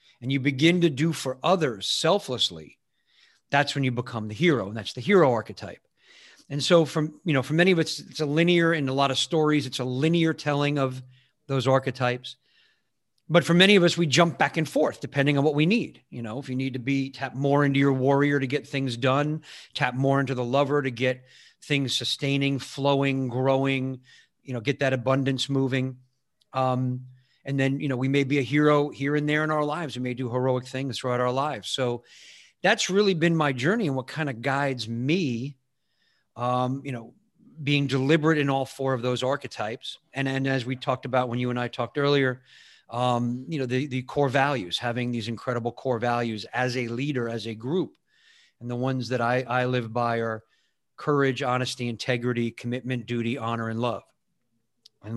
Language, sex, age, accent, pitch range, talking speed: English, male, 40-59, American, 125-145 Hz, 200 wpm